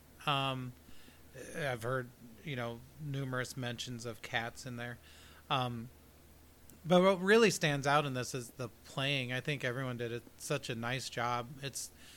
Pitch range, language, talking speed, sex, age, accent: 120-150 Hz, English, 160 wpm, male, 30-49, American